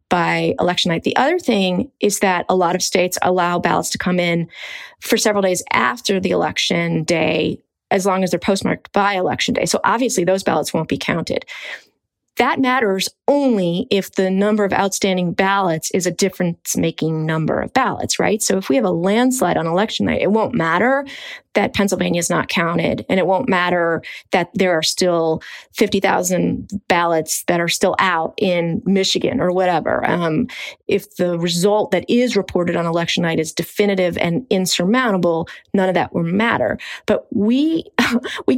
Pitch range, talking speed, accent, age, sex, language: 175-210 Hz, 175 wpm, American, 30-49, female, English